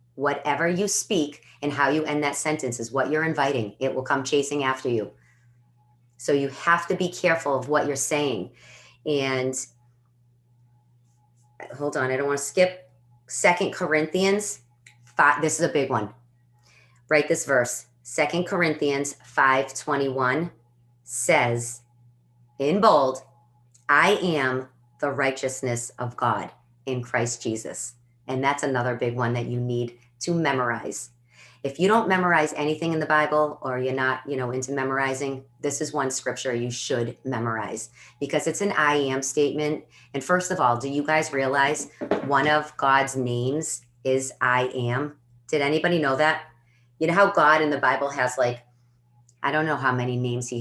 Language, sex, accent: English, female, American